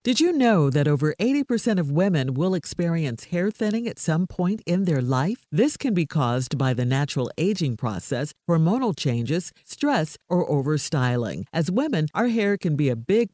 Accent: American